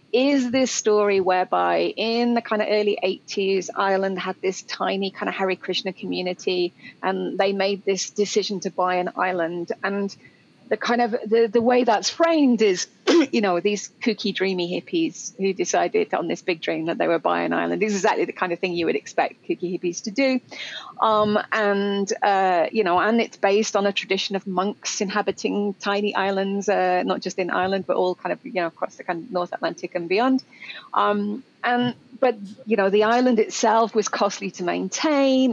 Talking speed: 200 wpm